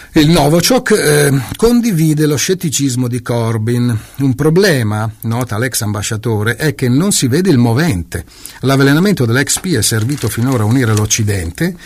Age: 50-69